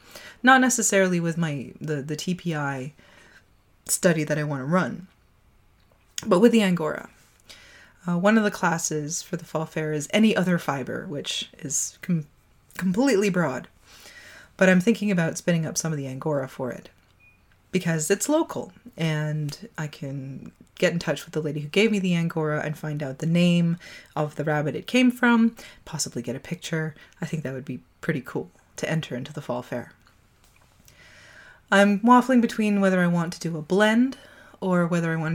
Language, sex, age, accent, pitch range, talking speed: English, female, 20-39, American, 145-180 Hz, 180 wpm